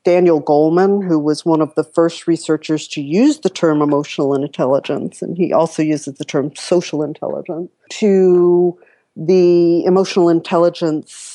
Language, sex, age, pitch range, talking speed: English, female, 50-69, 150-185 Hz, 145 wpm